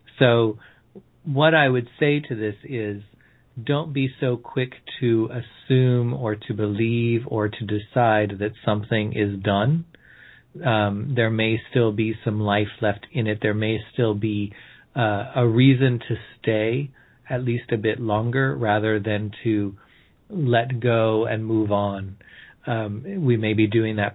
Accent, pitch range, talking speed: American, 105-120 Hz, 155 wpm